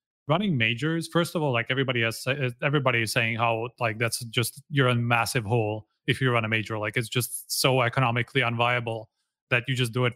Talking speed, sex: 205 wpm, male